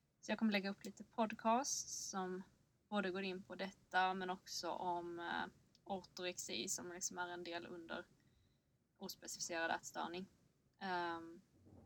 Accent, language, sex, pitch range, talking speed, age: native, Swedish, female, 170-195 Hz, 135 wpm, 20-39